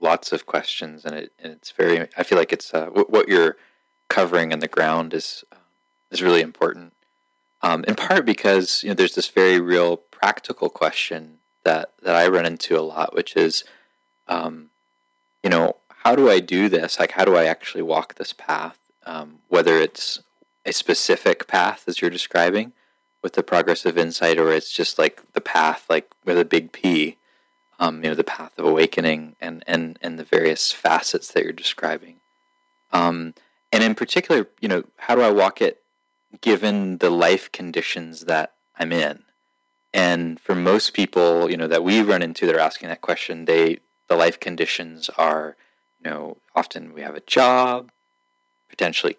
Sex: male